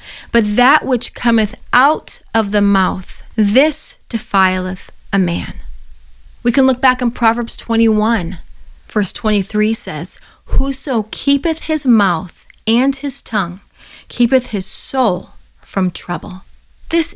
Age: 30-49